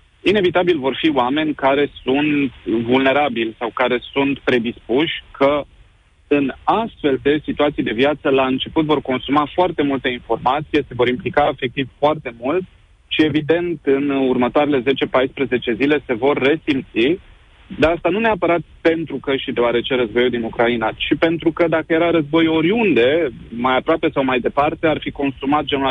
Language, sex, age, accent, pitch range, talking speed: Romanian, male, 30-49, native, 125-160 Hz, 155 wpm